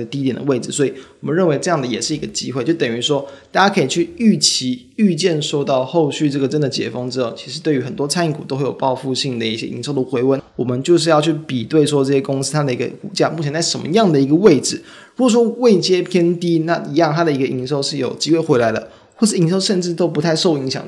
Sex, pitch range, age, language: male, 135-165 Hz, 20-39, Chinese